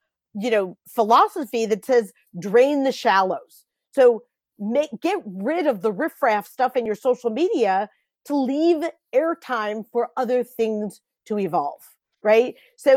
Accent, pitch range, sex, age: American, 220-275 Hz, female, 40-59